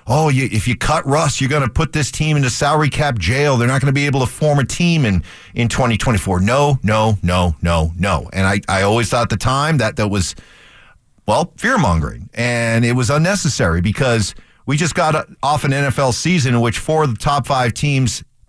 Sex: male